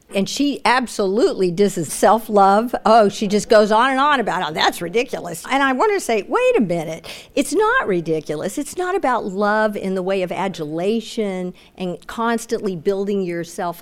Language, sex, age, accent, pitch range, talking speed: English, female, 50-69, American, 190-255 Hz, 175 wpm